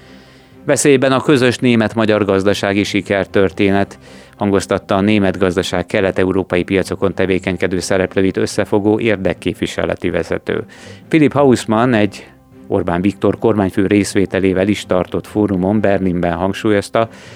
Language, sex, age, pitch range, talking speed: Hungarian, male, 30-49, 95-110 Hz, 100 wpm